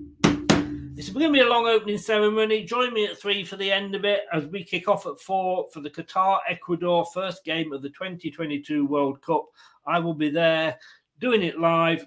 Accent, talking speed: British, 205 wpm